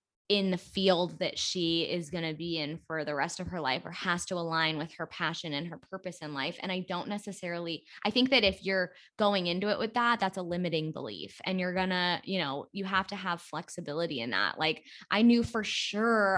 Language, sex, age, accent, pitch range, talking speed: English, female, 10-29, American, 170-200 Hz, 235 wpm